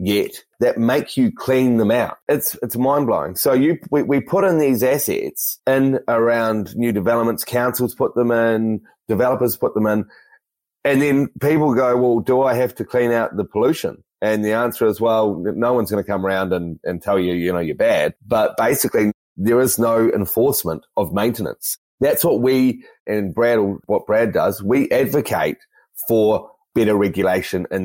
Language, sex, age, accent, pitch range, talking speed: English, male, 30-49, Australian, 105-130 Hz, 180 wpm